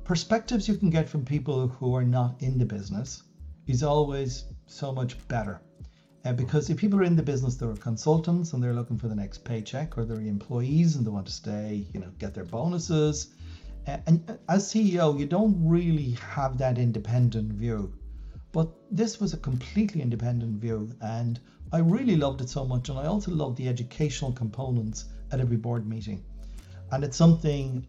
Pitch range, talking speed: 110-145 Hz, 185 wpm